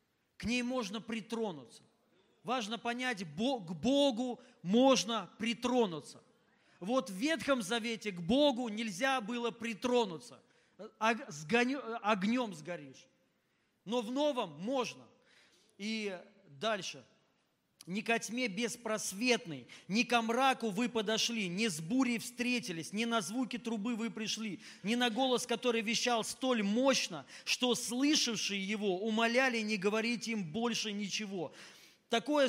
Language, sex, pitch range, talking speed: Russian, male, 200-245 Hz, 115 wpm